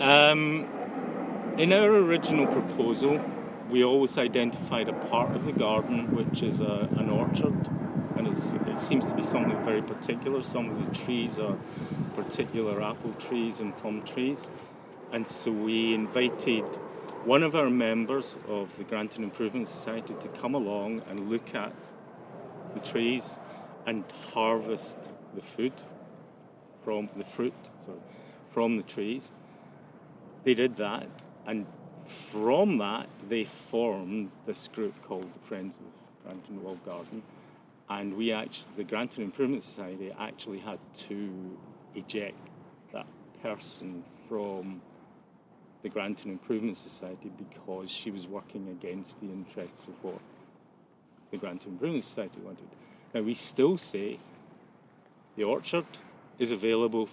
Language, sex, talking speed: English, male, 135 wpm